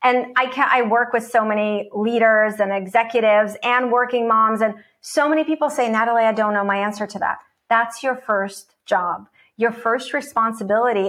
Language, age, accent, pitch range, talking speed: English, 40-59, American, 215-265 Hz, 185 wpm